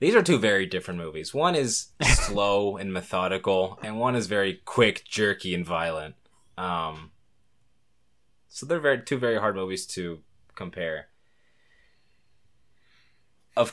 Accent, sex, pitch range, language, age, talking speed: American, male, 85-105 Hz, English, 20-39, 130 wpm